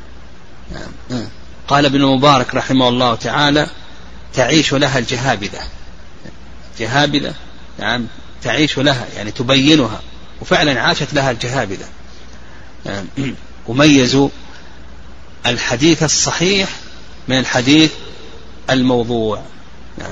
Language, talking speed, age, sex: Arabic, 80 wpm, 40-59, male